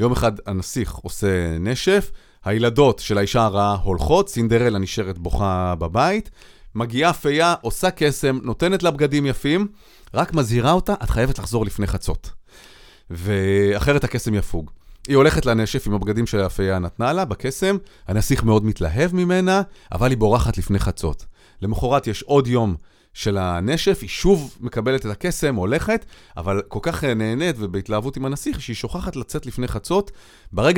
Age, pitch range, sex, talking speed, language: 30-49, 100-150 Hz, male, 150 wpm, Hebrew